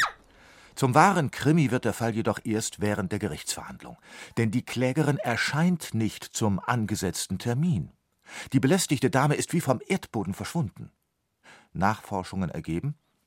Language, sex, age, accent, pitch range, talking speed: German, male, 50-69, German, 95-150 Hz, 130 wpm